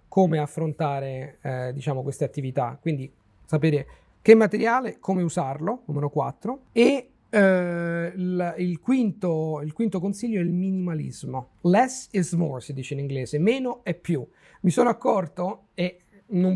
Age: 40-59